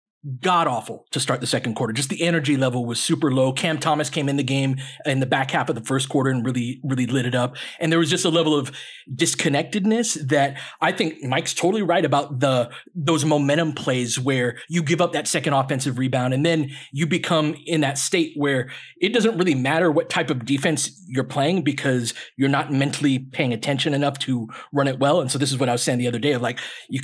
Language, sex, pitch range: English, male, 135-165 Hz